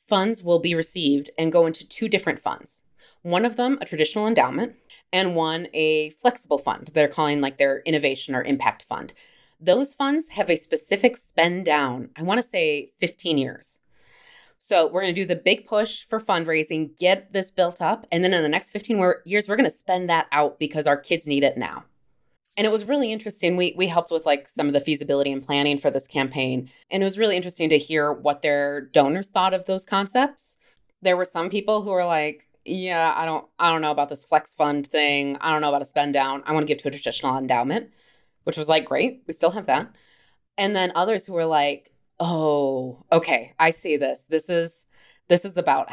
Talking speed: 215 wpm